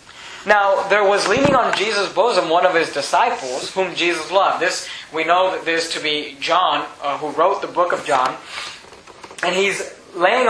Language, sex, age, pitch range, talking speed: English, male, 20-39, 170-215 Hz, 185 wpm